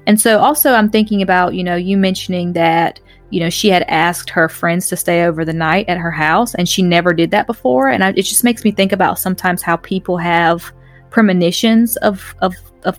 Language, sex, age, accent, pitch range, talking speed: English, female, 20-39, American, 175-205 Hz, 210 wpm